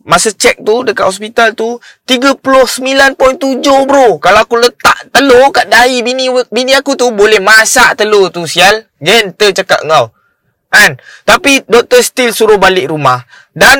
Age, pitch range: 20-39, 175-245 Hz